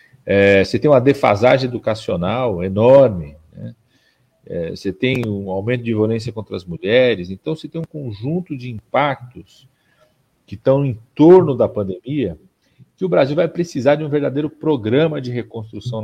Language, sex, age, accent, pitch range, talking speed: Portuguese, male, 50-69, Brazilian, 105-145 Hz, 155 wpm